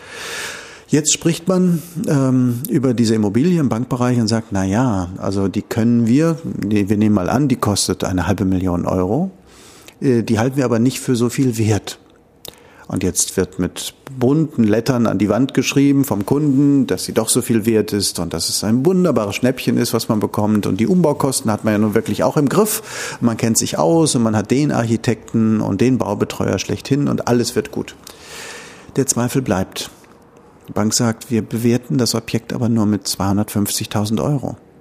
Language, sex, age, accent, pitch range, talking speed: German, male, 50-69, German, 105-140 Hz, 185 wpm